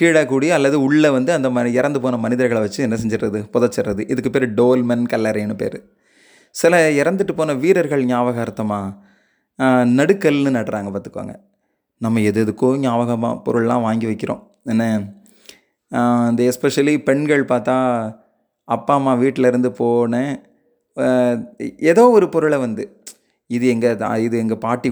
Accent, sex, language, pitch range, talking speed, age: native, male, Tamil, 115-140 Hz, 125 wpm, 30-49